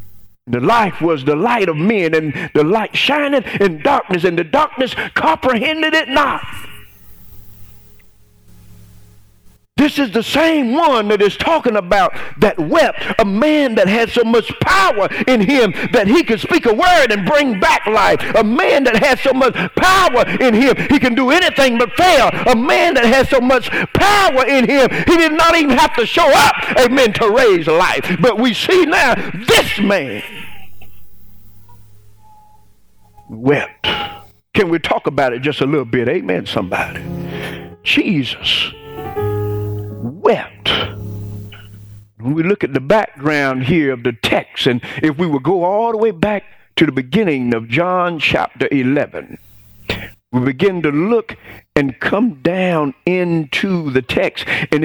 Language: English